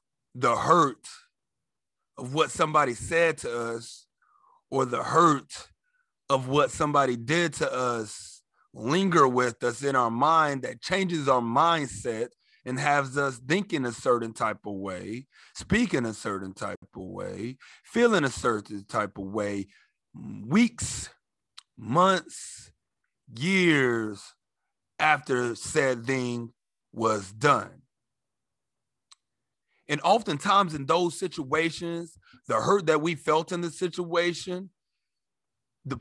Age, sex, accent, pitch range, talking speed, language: 30-49, male, American, 125-185 Hz, 115 wpm, English